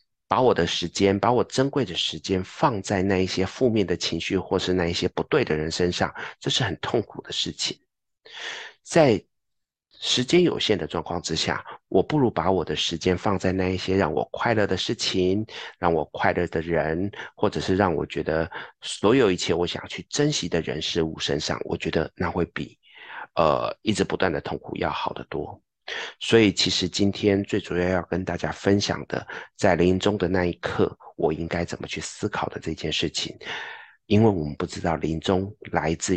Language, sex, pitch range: Chinese, male, 85-100 Hz